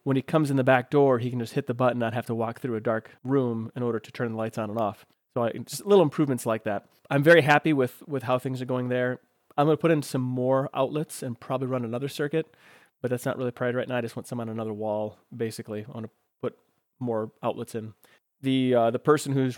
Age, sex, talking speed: 30-49, male, 265 wpm